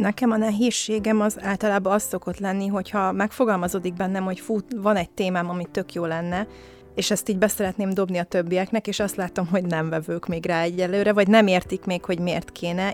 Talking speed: 200 wpm